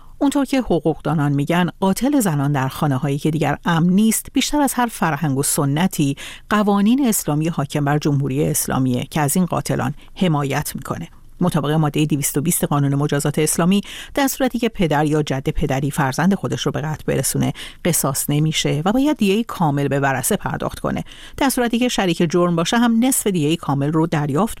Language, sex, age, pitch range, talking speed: Persian, female, 50-69, 145-190 Hz, 180 wpm